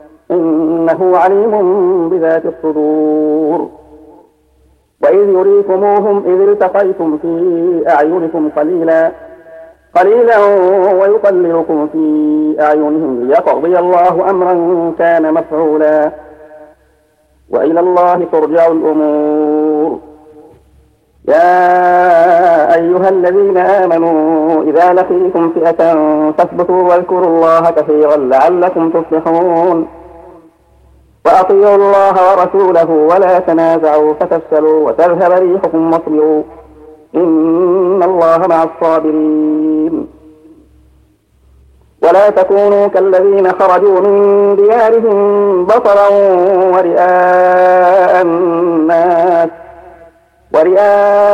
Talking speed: 70 wpm